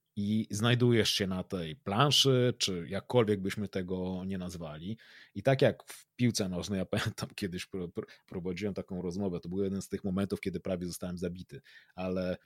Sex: male